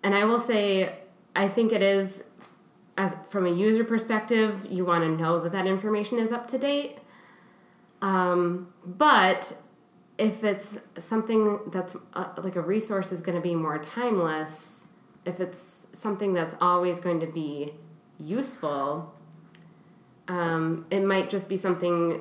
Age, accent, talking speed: 20-39, American, 150 wpm